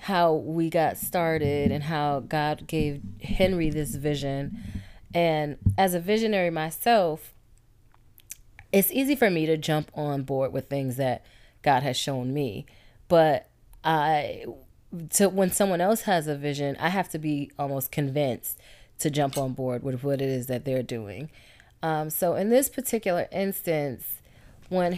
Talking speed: 155 wpm